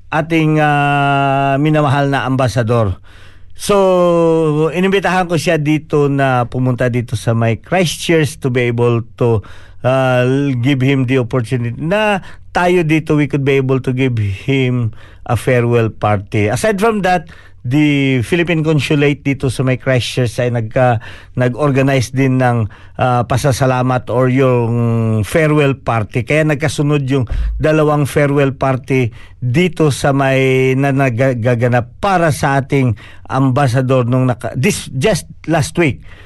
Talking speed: 130 wpm